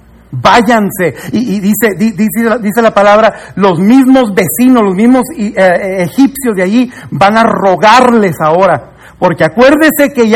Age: 50-69